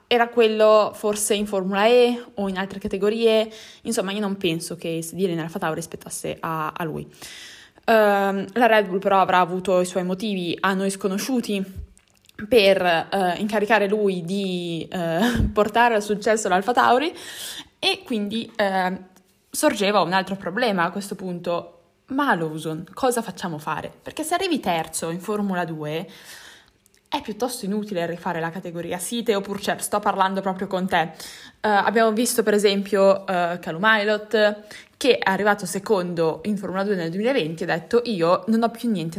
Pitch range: 180-220 Hz